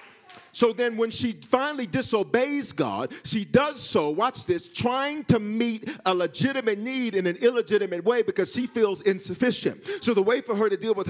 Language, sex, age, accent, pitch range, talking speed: English, male, 40-59, American, 215-280 Hz, 185 wpm